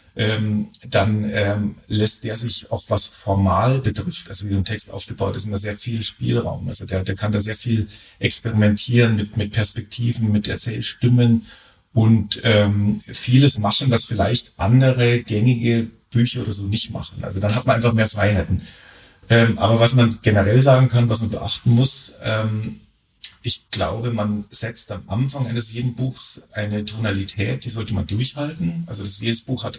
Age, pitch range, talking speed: 40-59, 105-125 Hz, 170 wpm